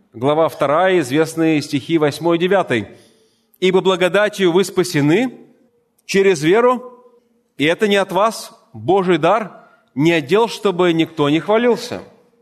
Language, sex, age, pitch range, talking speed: Russian, male, 30-49, 160-225 Hz, 120 wpm